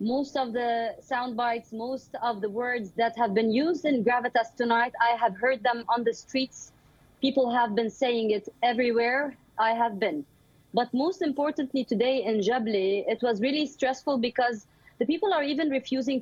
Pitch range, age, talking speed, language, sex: 225-270 Hz, 30-49, 180 wpm, English, female